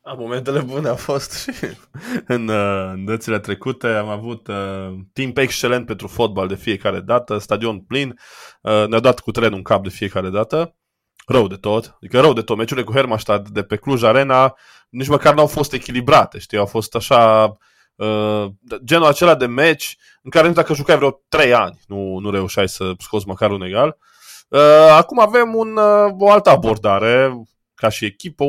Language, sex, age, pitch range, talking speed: Romanian, male, 20-39, 105-140 Hz, 185 wpm